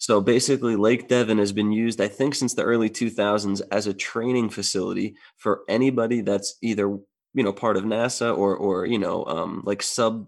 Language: English